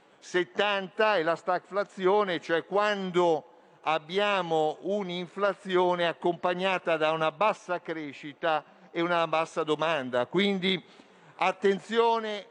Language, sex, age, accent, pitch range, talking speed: Italian, male, 50-69, native, 175-205 Hz, 90 wpm